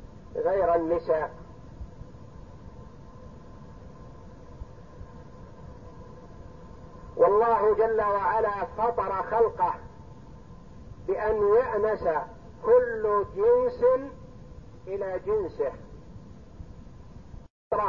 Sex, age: male, 50-69